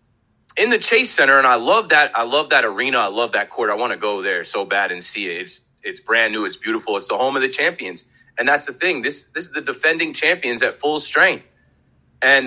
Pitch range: 135-185 Hz